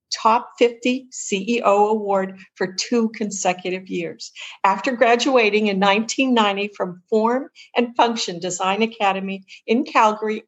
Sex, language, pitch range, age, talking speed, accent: female, English, 200-235 Hz, 50-69, 115 wpm, American